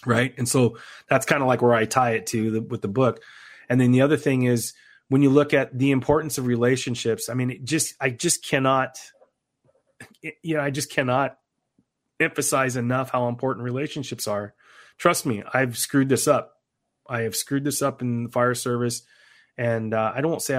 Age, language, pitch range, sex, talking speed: 30-49, English, 115-135 Hz, male, 200 wpm